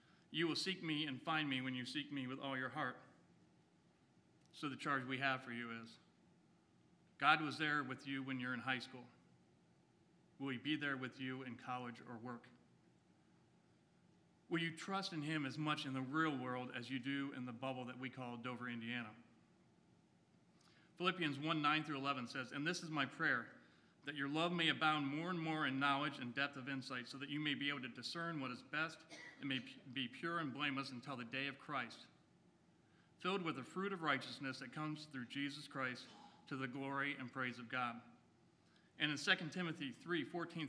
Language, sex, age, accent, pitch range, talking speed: English, male, 40-59, American, 130-155 Hz, 200 wpm